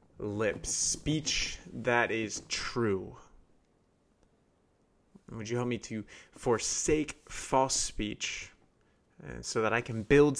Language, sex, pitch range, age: English, male, 105-125 Hz, 30-49